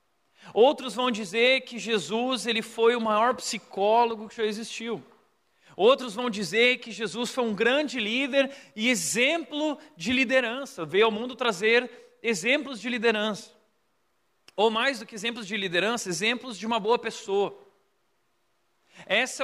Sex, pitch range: male, 200-245 Hz